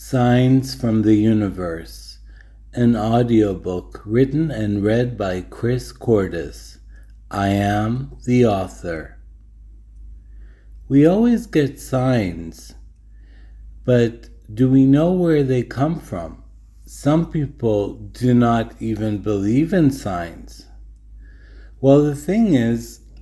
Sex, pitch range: male, 90-130 Hz